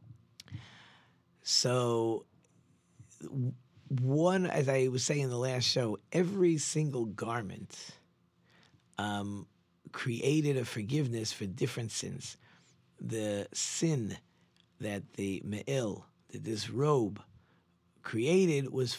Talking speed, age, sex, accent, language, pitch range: 95 wpm, 50-69, male, American, English, 105-140 Hz